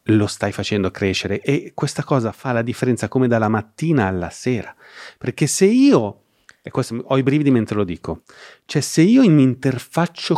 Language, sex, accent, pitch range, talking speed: Italian, male, native, 105-140 Hz, 180 wpm